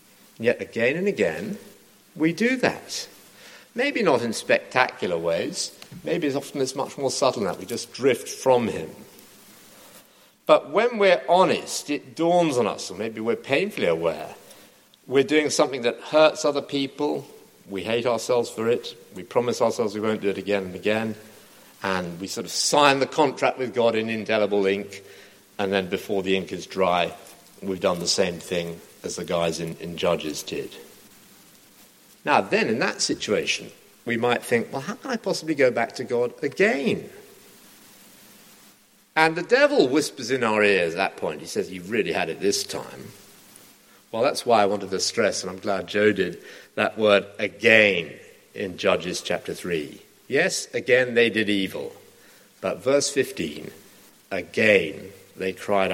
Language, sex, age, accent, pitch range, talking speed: English, male, 50-69, British, 100-155 Hz, 170 wpm